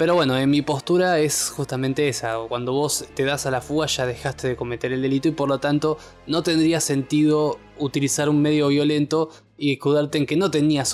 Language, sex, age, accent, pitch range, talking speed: Spanish, male, 20-39, Argentinian, 130-155 Hz, 210 wpm